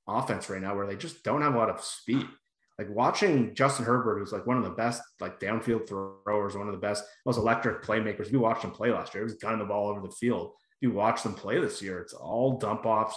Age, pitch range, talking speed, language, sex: 30-49, 105-125 Hz, 255 wpm, English, male